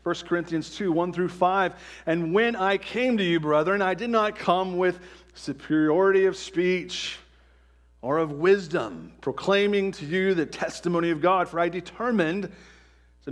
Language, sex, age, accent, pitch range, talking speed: English, male, 40-59, American, 120-185 Hz, 160 wpm